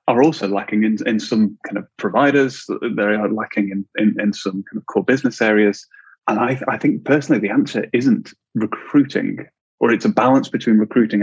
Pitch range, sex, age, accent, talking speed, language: 100-110 Hz, male, 20-39, British, 190 wpm, English